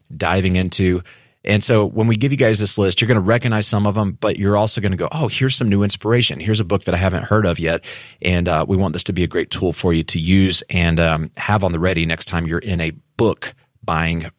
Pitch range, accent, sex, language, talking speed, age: 95-120 Hz, American, male, English, 270 wpm, 30-49